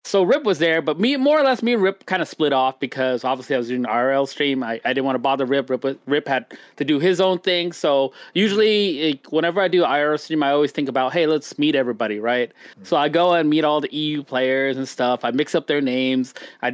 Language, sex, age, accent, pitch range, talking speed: English, male, 20-39, American, 140-205 Hz, 265 wpm